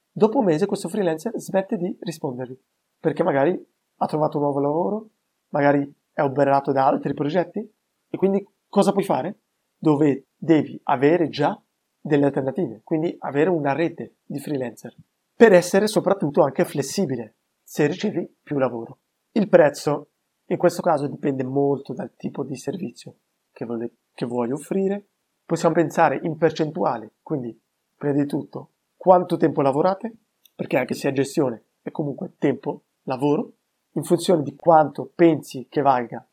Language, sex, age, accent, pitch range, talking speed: Italian, male, 30-49, native, 135-175 Hz, 145 wpm